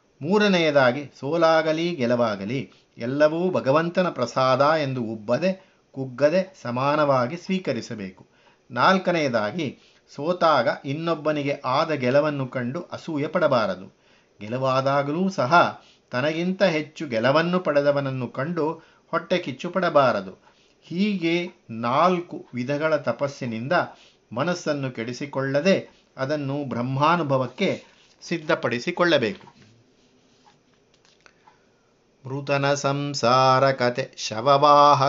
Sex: male